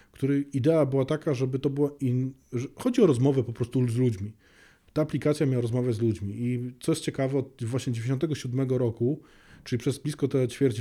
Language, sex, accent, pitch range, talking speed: Polish, male, native, 120-140 Hz, 190 wpm